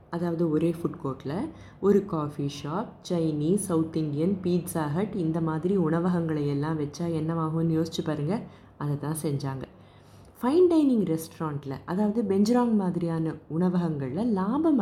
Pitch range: 160-215 Hz